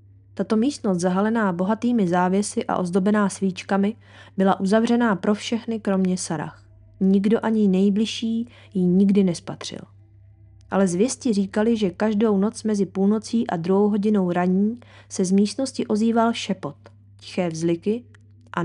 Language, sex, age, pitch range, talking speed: Czech, female, 20-39, 175-215 Hz, 130 wpm